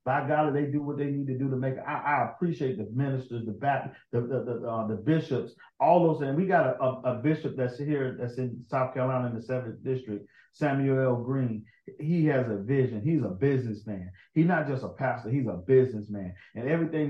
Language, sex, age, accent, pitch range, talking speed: English, male, 40-59, American, 120-155 Hz, 225 wpm